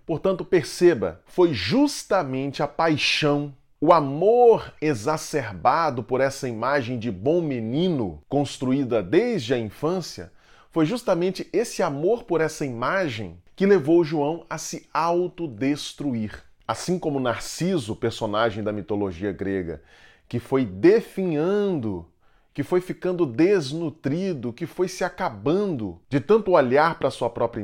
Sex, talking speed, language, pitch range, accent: male, 125 wpm, Portuguese, 115-165 Hz, Brazilian